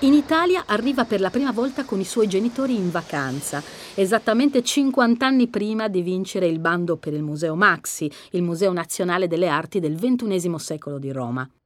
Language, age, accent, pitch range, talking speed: Italian, 40-59, native, 160-255 Hz, 180 wpm